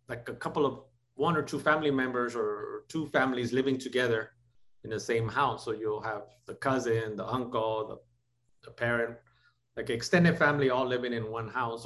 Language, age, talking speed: English, 30-49, 180 wpm